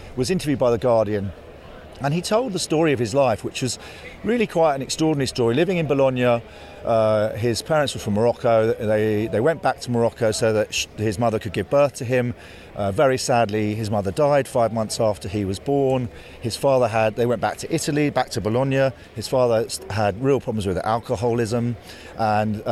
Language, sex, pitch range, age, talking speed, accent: English, male, 95-125 Hz, 40-59, 200 wpm, British